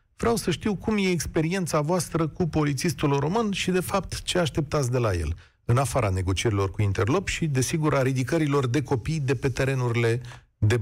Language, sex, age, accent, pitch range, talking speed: Romanian, male, 40-59, native, 105-145 Hz, 185 wpm